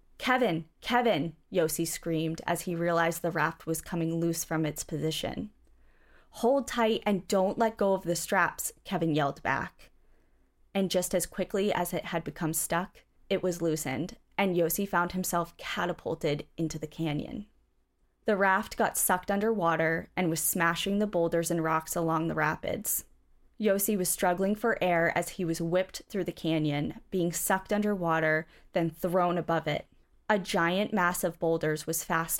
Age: 20-39